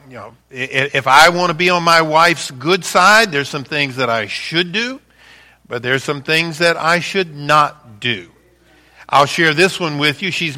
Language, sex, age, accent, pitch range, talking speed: English, male, 50-69, American, 135-175 Hz, 200 wpm